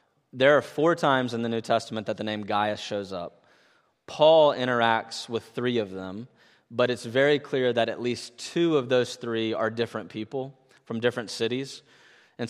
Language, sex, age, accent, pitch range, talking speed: English, male, 20-39, American, 110-130 Hz, 180 wpm